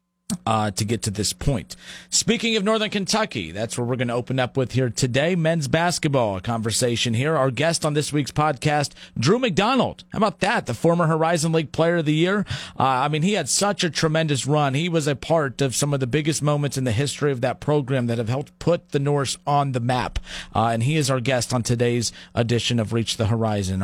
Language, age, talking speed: English, 40-59, 230 wpm